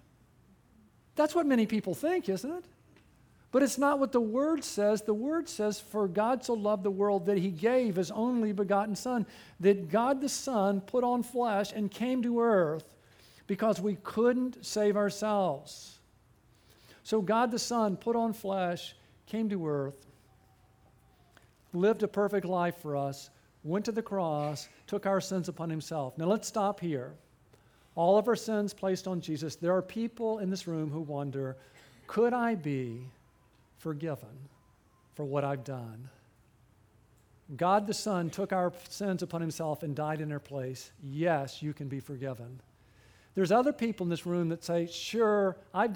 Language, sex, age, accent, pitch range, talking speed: English, male, 50-69, American, 135-210 Hz, 165 wpm